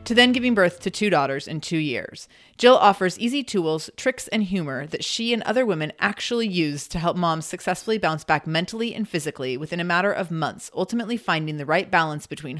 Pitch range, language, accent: 160-215 Hz, English, American